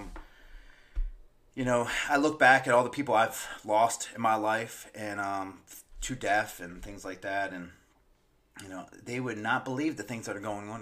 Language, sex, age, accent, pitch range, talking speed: English, male, 30-49, American, 95-120 Hz, 195 wpm